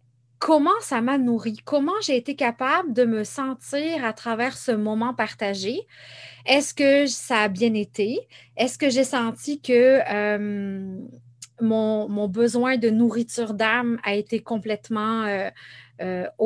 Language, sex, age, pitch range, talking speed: French, female, 30-49, 200-255 Hz, 140 wpm